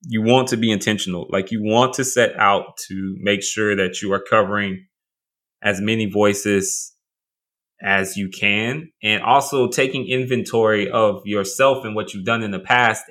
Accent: American